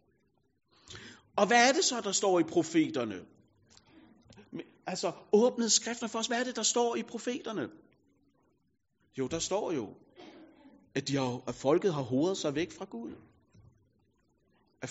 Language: Danish